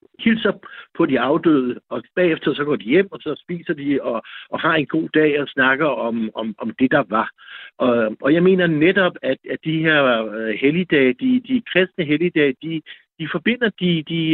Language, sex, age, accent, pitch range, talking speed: Danish, male, 60-79, native, 135-180 Hz, 195 wpm